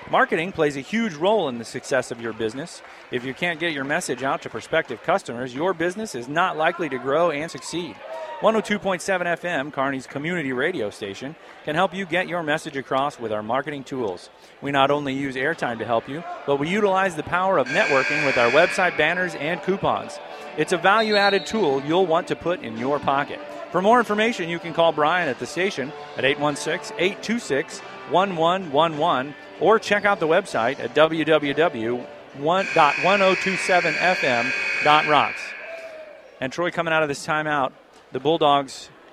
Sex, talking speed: male, 165 wpm